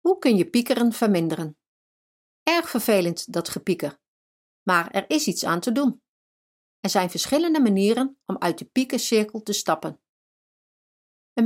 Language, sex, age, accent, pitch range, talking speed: English, female, 40-59, Dutch, 175-250 Hz, 140 wpm